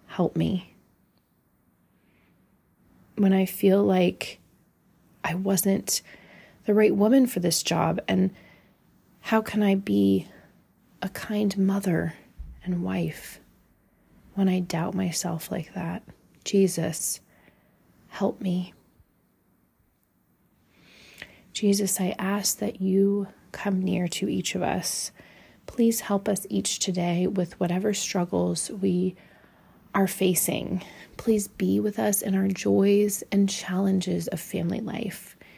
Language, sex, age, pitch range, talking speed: English, female, 30-49, 175-200 Hz, 115 wpm